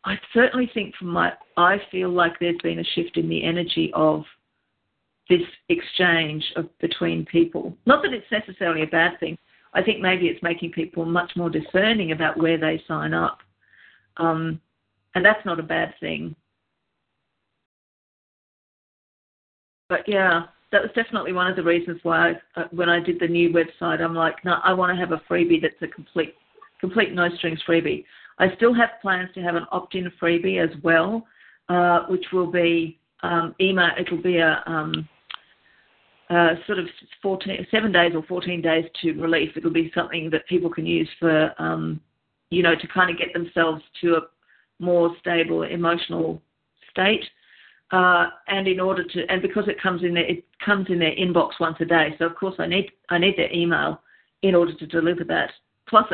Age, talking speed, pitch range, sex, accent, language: 50-69, 180 wpm, 165-185 Hz, female, Australian, English